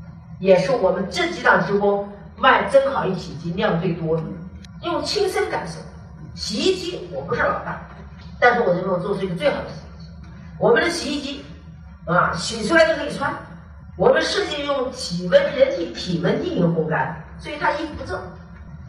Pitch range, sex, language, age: 165-260 Hz, female, Chinese, 50-69